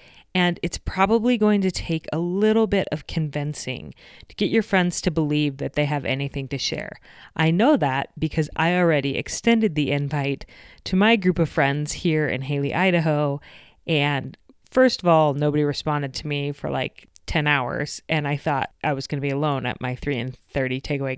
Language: English